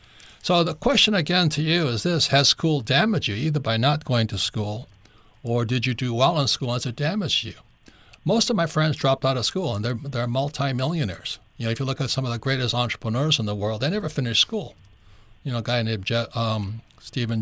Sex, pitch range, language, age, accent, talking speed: male, 120-165 Hz, English, 60-79, American, 230 wpm